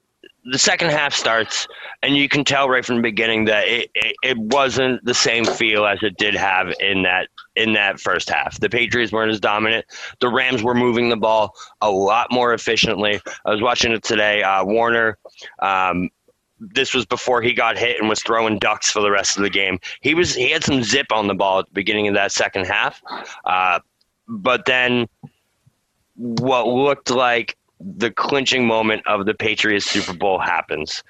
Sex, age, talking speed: male, 20-39, 195 wpm